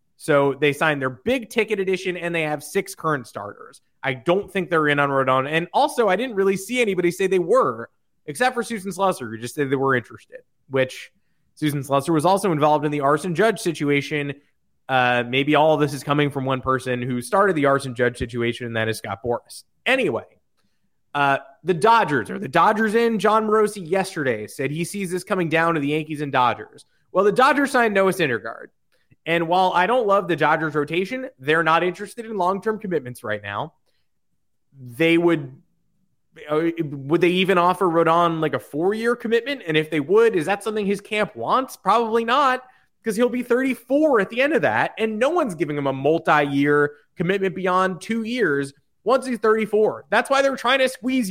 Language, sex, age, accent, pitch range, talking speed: English, male, 20-39, American, 145-215 Hz, 195 wpm